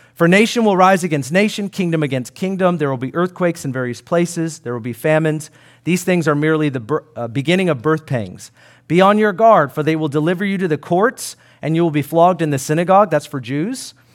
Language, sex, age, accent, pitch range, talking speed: English, male, 40-59, American, 140-175 Hz, 220 wpm